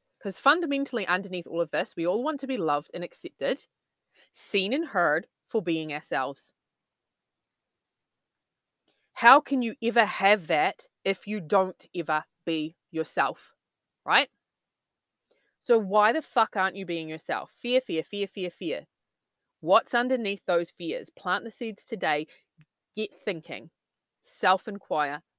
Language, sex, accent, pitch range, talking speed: English, female, Australian, 180-255 Hz, 135 wpm